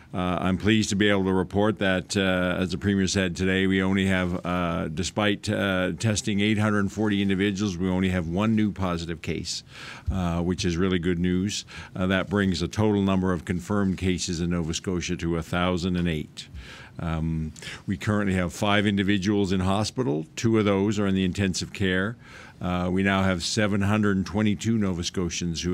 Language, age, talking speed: English, 50-69, 175 wpm